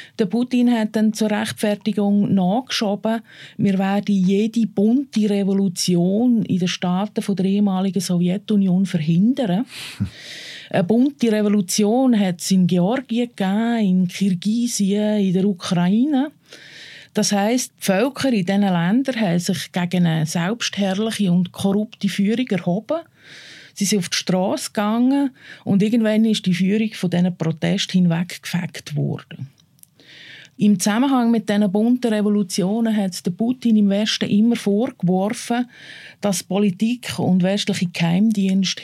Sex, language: female, German